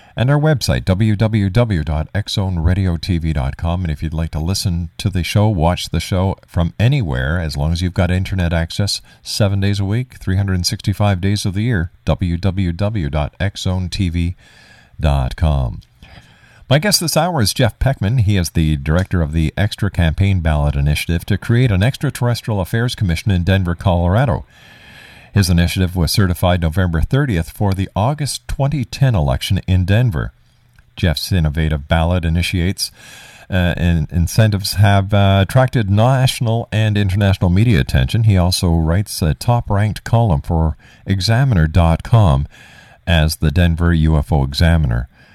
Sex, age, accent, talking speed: male, 50-69, American, 135 wpm